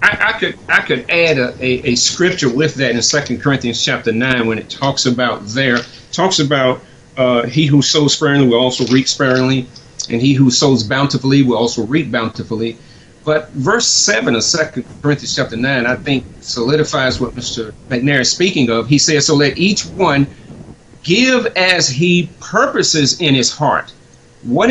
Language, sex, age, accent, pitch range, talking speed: English, male, 40-59, American, 125-155 Hz, 175 wpm